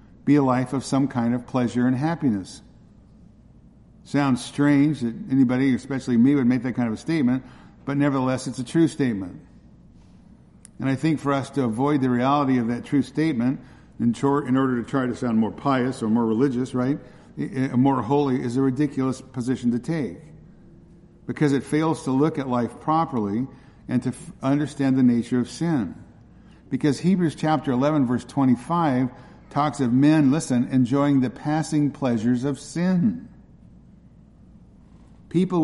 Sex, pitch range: male, 125-145 Hz